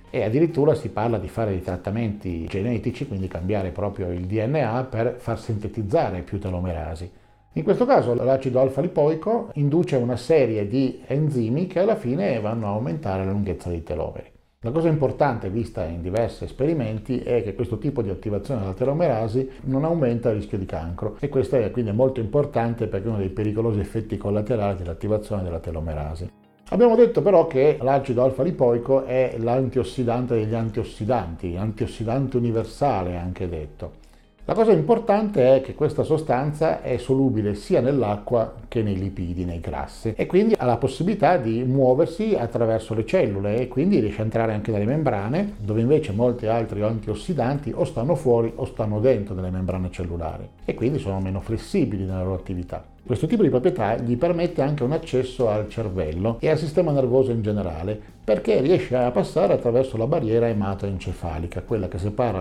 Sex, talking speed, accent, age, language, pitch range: male, 170 wpm, native, 50-69, Italian, 100-130 Hz